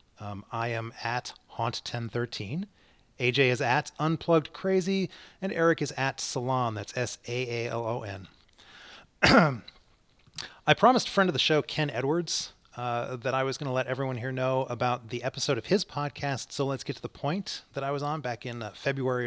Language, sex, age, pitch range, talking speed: English, male, 30-49, 110-140 Hz, 175 wpm